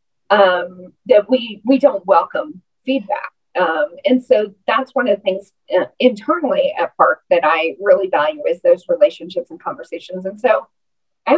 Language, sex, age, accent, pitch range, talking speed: English, female, 40-59, American, 190-285 Hz, 160 wpm